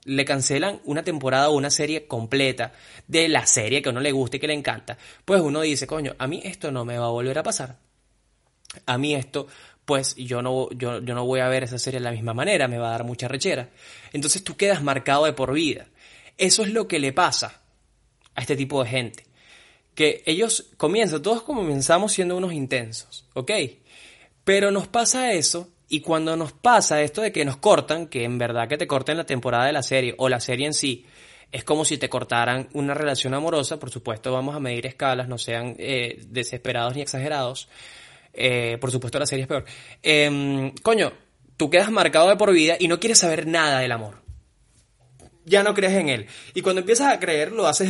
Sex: male